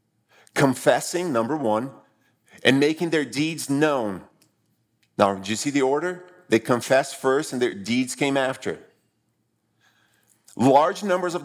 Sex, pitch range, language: male, 130-165 Hz, English